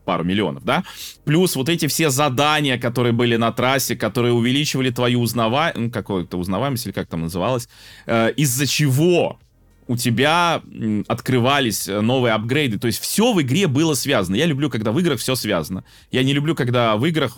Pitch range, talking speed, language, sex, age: 105-140 Hz, 175 wpm, Russian, male, 20-39